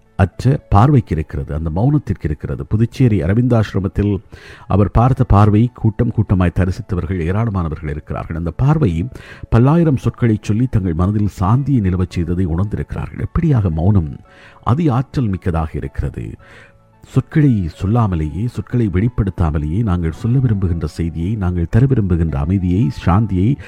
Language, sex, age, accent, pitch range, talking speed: Tamil, male, 50-69, native, 85-115 Hz, 115 wpm